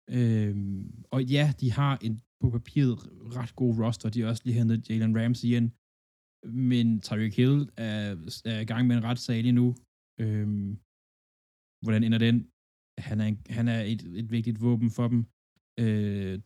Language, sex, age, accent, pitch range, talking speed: Danish, male, 20-39, native, 110-125 Hz, 170 wpm